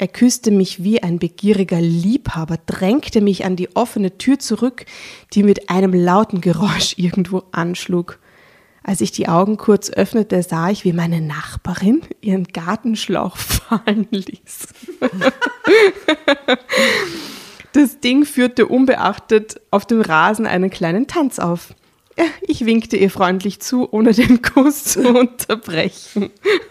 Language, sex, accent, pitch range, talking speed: German, female, German, 175-220 Hz, 130 wpm